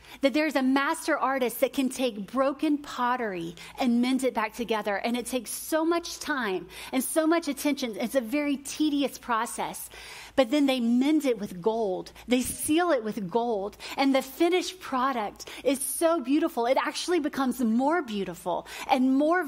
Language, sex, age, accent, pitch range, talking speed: English, female, 30-49, American, 245-320 Hz, 175 wpm